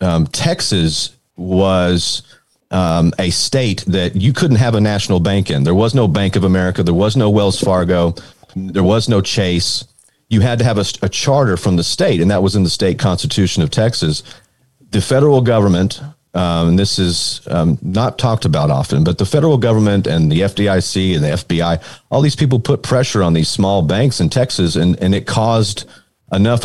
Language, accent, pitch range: English, American, 90-120 Hz